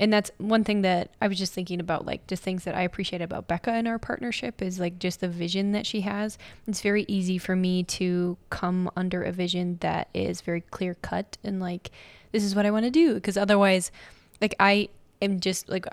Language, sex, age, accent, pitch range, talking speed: English, female, 20-39, American, 180-210 Hz, 225 wpm